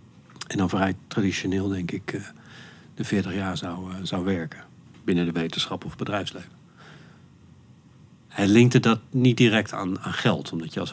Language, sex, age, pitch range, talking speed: Dutch, male, 50-69, 95-125 Hz, 155 wpm